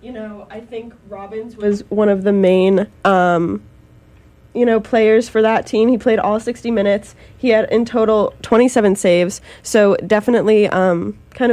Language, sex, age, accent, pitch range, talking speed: English, female, 10-29, American, 185-225 Hz, 170 wpm